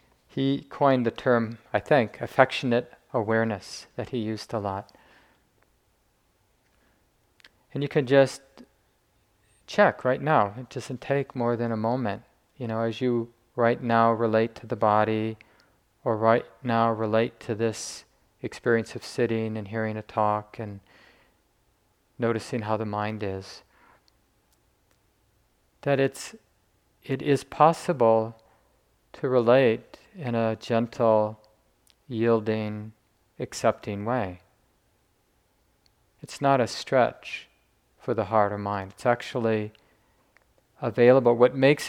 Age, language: 40-59, English